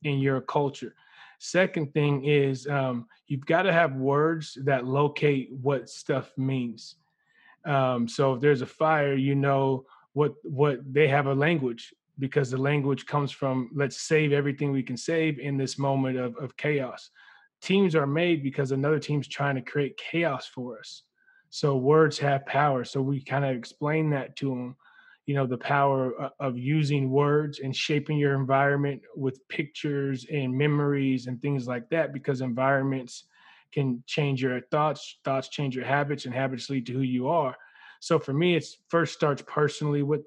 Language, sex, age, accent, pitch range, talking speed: English, male, 20-39, American, 135-150 Hz, 175 wpm